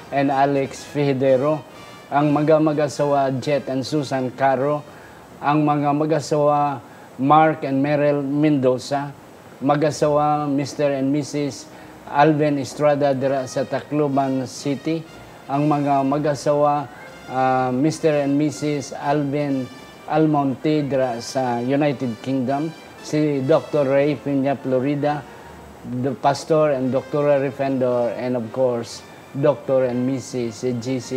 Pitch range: 130-155 Hz